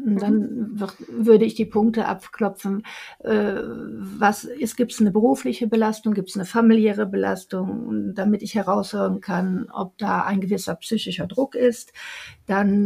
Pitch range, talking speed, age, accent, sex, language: 195-225 Hz, 145 wpm, 50-69, German, female, German